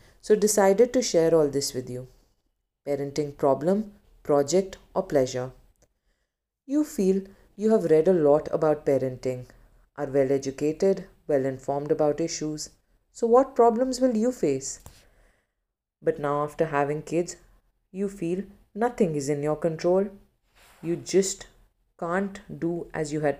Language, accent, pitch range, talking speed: Hindi, native, 140-190 Hz, 140 wpm